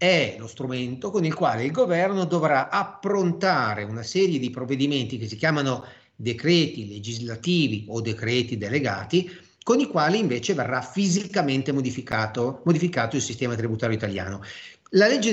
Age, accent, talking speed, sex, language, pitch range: 40-59, native, 140 wpm, male, Italian, 120-165 Hz